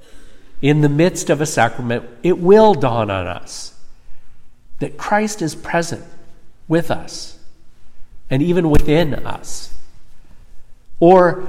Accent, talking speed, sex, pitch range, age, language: American, 115 wpm, male, 120-165 Hz, 50-69, English